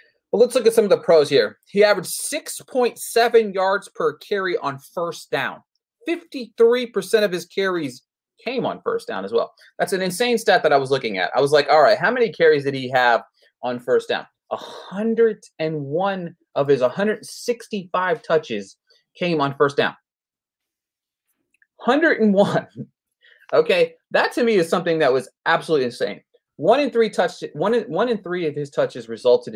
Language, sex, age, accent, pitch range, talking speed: English, male, 30-49, American, 155-250 Hz, 170 wpm